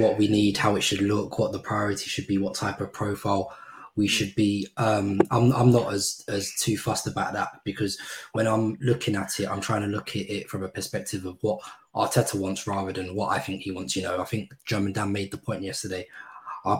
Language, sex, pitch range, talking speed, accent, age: English, male, 100-110 Hz, 235 wpm, British, 20-39